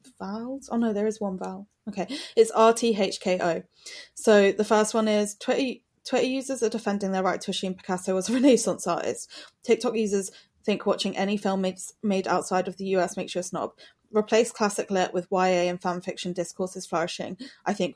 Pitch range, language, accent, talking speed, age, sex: 180-210 Hz, English, British, 195 wpm, 20-39, female